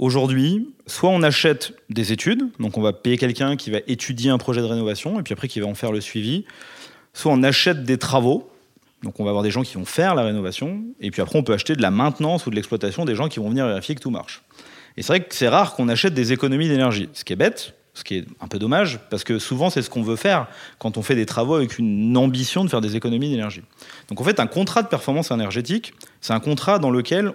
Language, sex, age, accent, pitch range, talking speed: French, male, 30-49, French, 115-160 Hz, 260 wpm